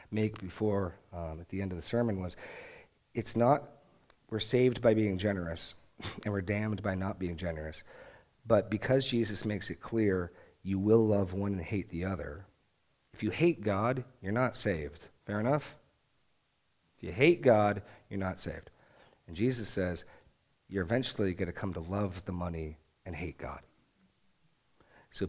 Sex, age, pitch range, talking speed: male, 40-59, 85-115 Hz, 165 wpm